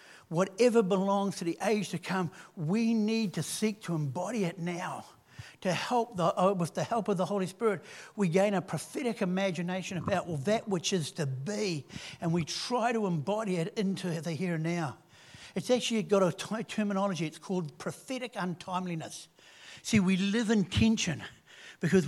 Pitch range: 160-195 Hz